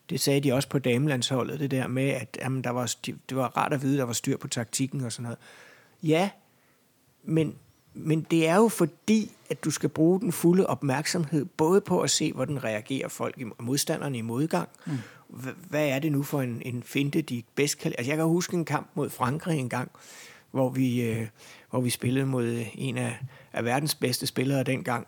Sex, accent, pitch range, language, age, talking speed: male, native, 130-160 Hz, Danish, 60-79, 210 wpm